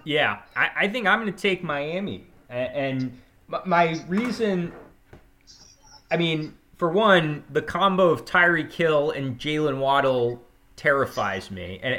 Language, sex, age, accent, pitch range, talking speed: English, male, 20-39, American, 125-170 Hz, 130 wpm